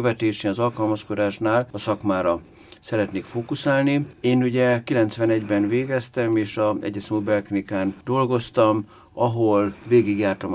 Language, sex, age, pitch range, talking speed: Hungarian, male, 60-79, 100-120 Hz, 95 wpm